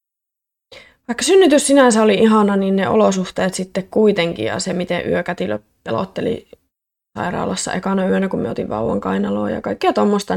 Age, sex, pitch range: 20-39, female, 180-240 Hz